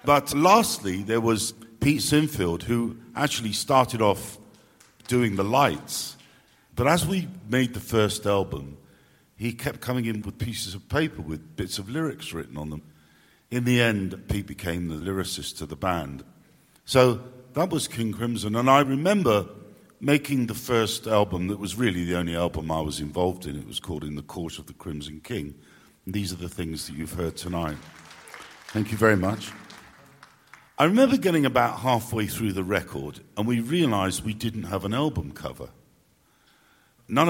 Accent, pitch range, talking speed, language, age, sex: British, 90-125 Hz, 175 wpm, English, 50-69, male